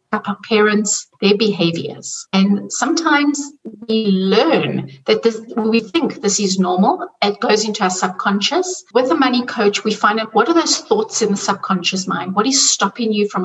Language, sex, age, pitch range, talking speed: English, female, 60-79, 190-240 Hz, 185 wpm